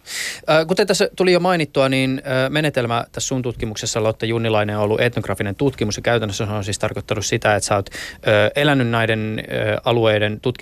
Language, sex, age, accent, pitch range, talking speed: Finnish, male, 20-39, native, 105-120 Hz, 145 wpm